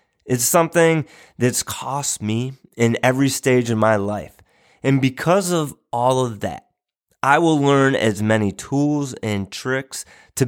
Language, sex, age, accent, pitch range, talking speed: English, male, 20-39, American, 110-140 Hz, 150 wpm